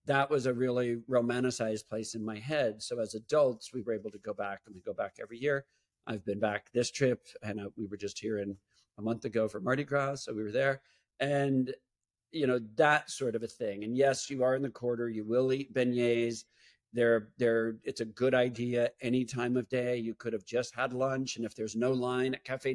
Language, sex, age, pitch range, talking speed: English, male, 50-69, 110-130 Hz, 230 wpm